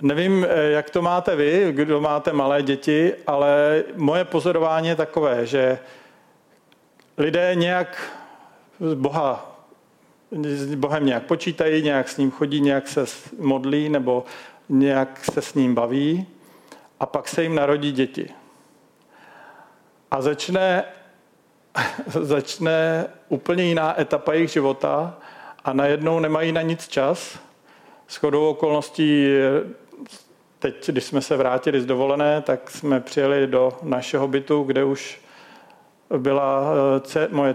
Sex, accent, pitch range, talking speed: male, native, 140-160 Hz, 120 wpm